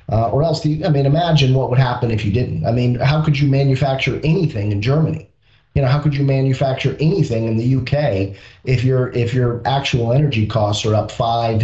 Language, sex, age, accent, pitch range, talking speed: English, male, 30-49, American, 120-155 Hz, 215 wpm